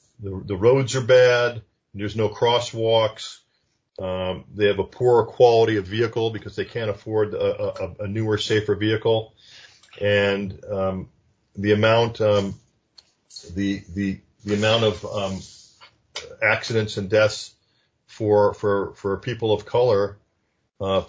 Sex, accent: male, American